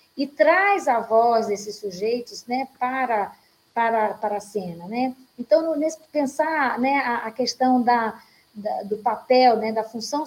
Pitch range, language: 220-265 Hz, Portuguese